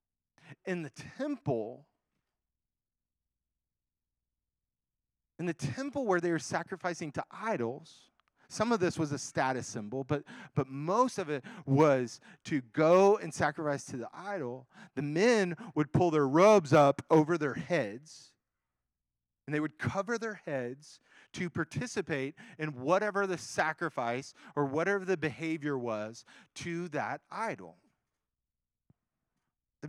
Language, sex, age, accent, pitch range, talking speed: English, male, 30-49, American, 145-215 Hz, 125 wpm